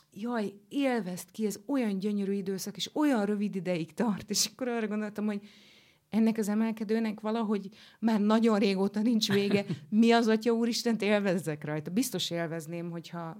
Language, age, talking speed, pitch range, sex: Hungarian, 30-49, 160 wpm, 155-200 Hz, female